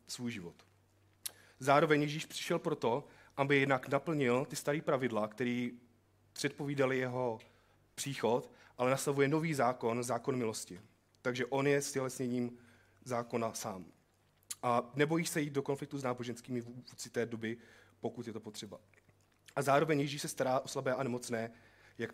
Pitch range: 110-145 Hz